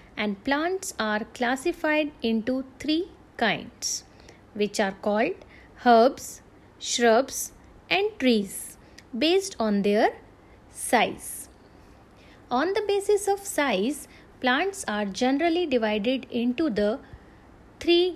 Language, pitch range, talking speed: English, 225-320 Hz, 100 wpm